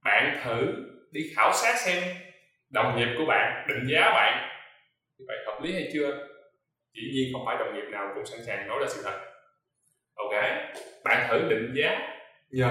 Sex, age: male, 20-39